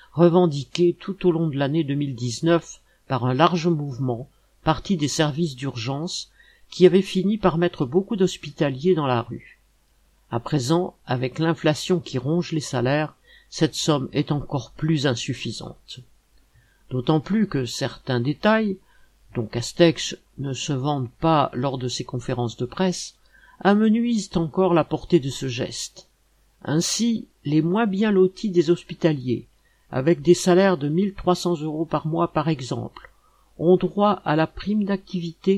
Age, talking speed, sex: 50-69, 145 wpm, male